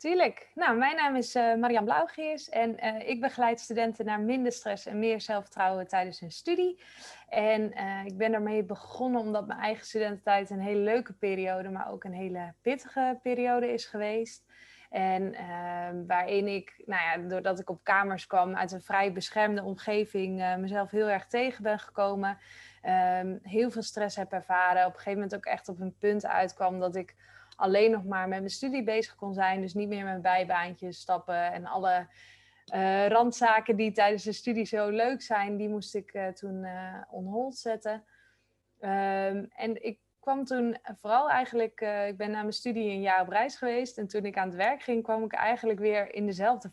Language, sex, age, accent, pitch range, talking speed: Dutch, female, 20-39, Dutch, 190-230 Hz, 190 wpm